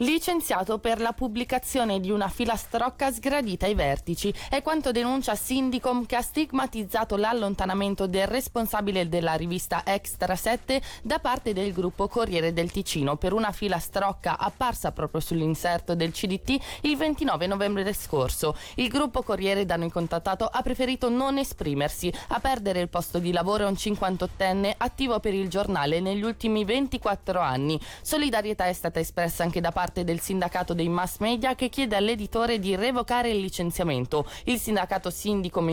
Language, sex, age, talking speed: Italian, female, 20-39, 155 wpm